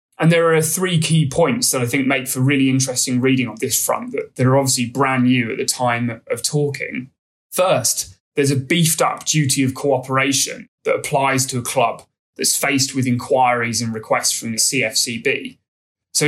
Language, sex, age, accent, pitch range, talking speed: English, male, 20-39, British, 125-150 Hz, 185 wpm